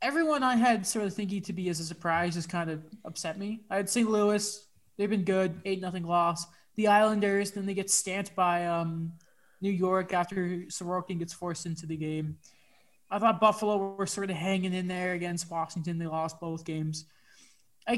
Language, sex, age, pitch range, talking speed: English, male, 20-39, 170-230 Hz, 195 wpm